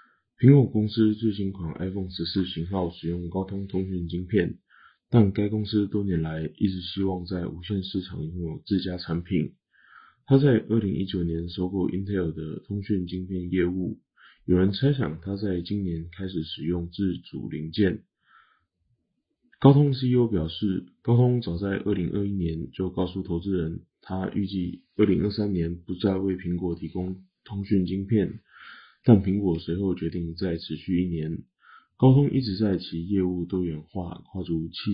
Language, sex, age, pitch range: Chinese, male, 20-39, 85-100 Hz